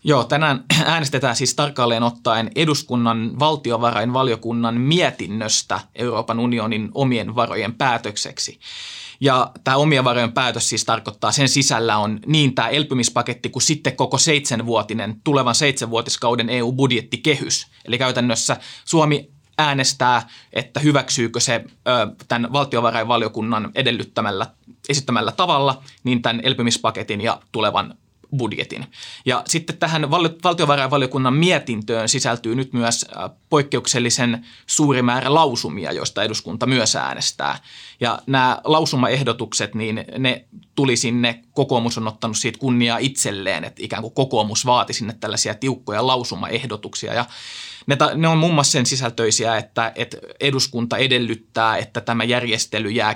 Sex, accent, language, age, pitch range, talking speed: male, native, Finnish, 20-39, 115-135 Hz, 120 wpm